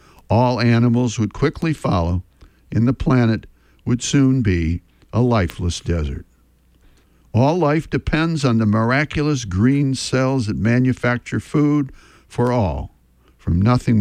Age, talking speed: 60-79, 125 wpm